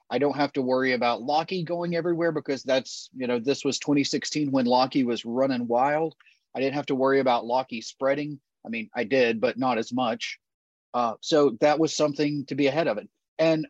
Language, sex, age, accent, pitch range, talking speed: Ukrainian, male, 30-49, American, 135-165 Hz, 210 wpm